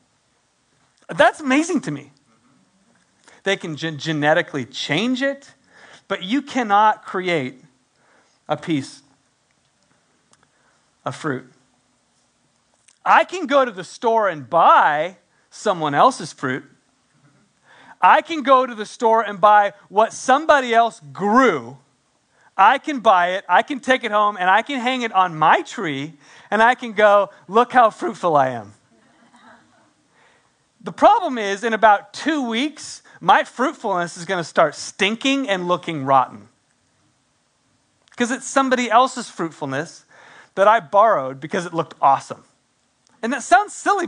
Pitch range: 185-260 Hz